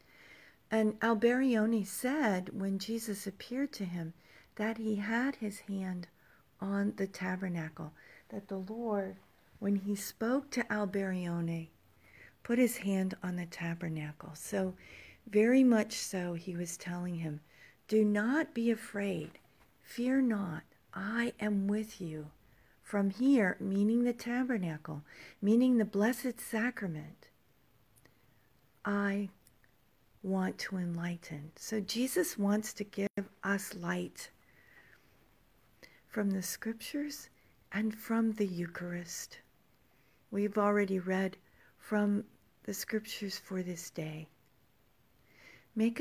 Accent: American